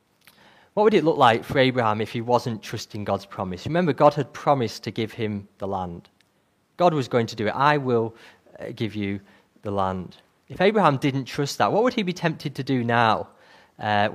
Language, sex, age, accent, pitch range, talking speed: English, male, 30-49, British, 115-155 Hz, 210 wpm